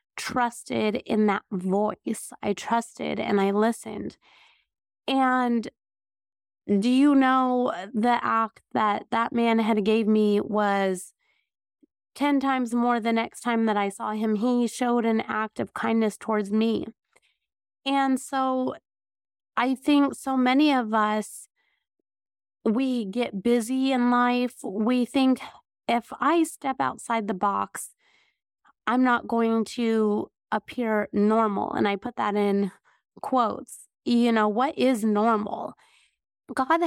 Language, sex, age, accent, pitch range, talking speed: English, female, 30-49, American, 220-260 Hz, 130 wpm